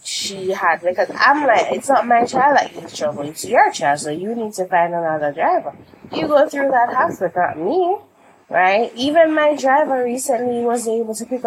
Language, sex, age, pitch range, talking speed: English, female, 20-39, 180-255 Hz, 200 wpm